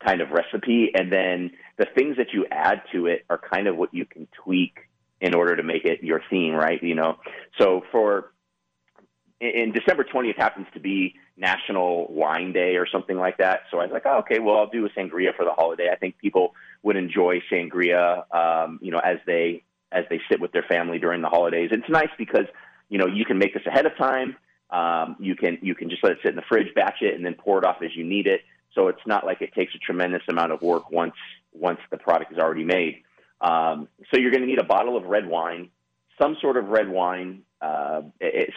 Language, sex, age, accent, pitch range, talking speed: English, male, 30-49, American, 85-105 Hz, 230 wpm